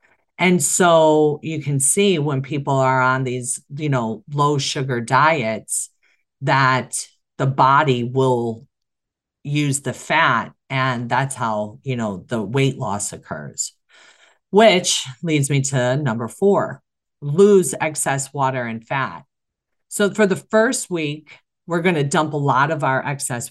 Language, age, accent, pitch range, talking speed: English, 40-59, American, 125-155 Hz, 145 wpm